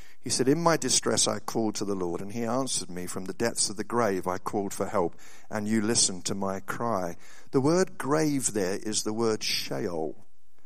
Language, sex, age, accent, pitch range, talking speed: English, male, 50-69, British, 110-140 Hz, 215 wpm